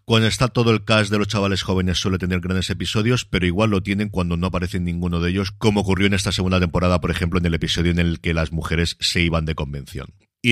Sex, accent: male, Spanish